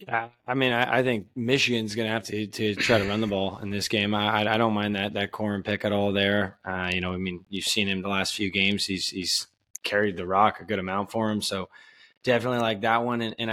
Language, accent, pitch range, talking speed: English, American, 100-115 Hz, 265 wpm